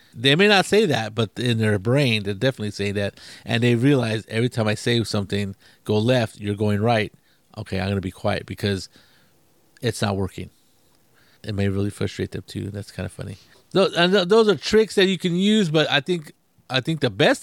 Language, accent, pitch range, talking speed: English, American, 105-130 Hz, 210 wpm